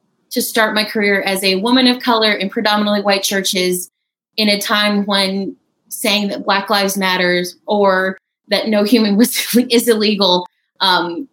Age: 20-39